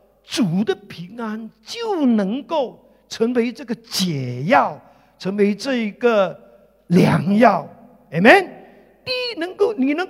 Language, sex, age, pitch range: Chinese, male, 50-69, 185-270 Hz